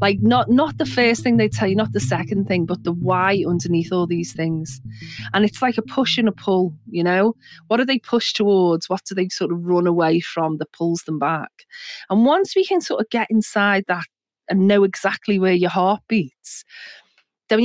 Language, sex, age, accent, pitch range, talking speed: English, female, 30-49, British, 170-235 Hz, 220 wpm